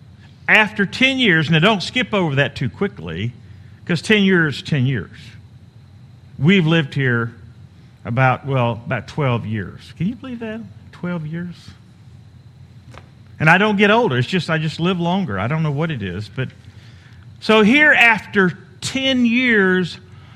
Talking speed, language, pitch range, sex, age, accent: 155 wpm, English, 120-195 Hz, male, 50-69, American